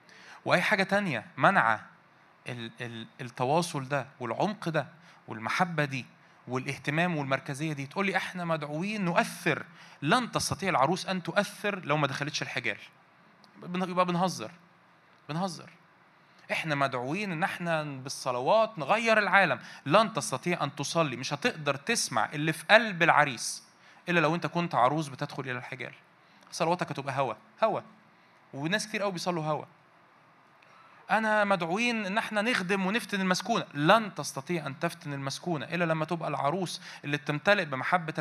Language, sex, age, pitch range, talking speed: Arabic, male, 20-39, 145-185 Hz, 130 wpm